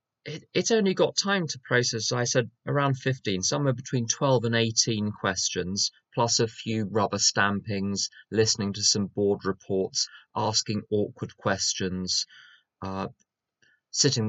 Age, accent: 20-39, British